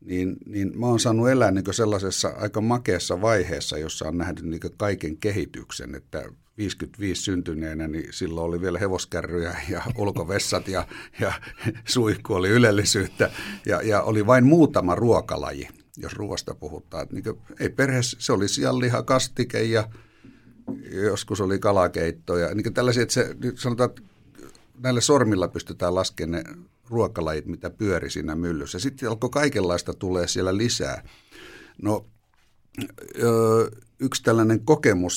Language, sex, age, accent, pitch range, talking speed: Finnish, male, 60-79, native, 85-115 Hz, 130 wpm